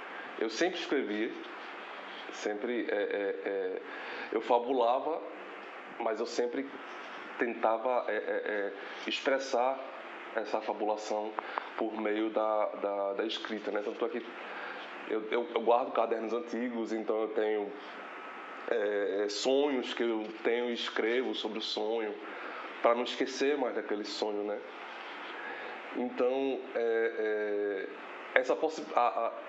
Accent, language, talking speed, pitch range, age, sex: Brazilian, Portuguese, 120 wpm, 110-150 Hz, 20-39, male